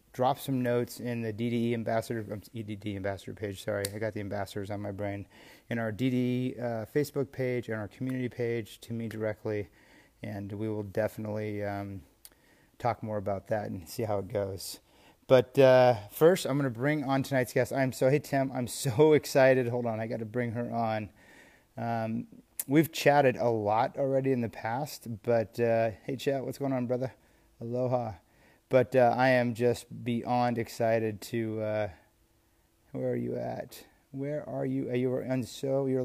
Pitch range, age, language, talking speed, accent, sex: 110-130 Hz, 30-49, English, 185 wpm, American, male